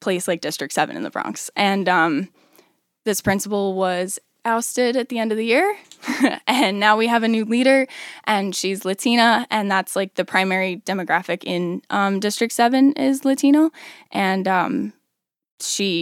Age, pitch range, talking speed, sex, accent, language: 10-29, 175-215 Hz, 165 wpm, female, American, English